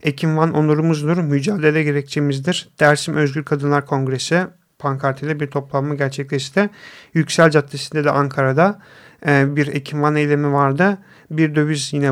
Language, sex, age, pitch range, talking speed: Turkish, male, 40-59, 140-160 Hz, 115 wpm